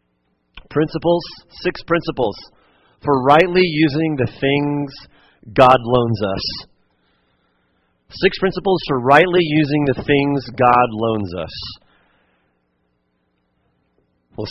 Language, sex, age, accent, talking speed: English, male, 40-59, American, 90 wpm